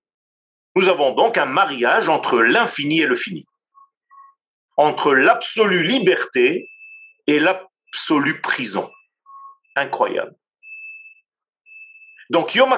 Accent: French